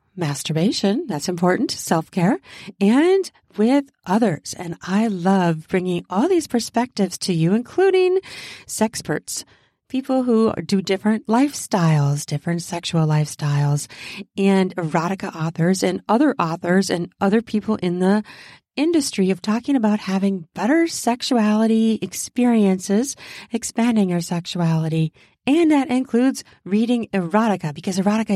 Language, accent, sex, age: English, American, female, 40-59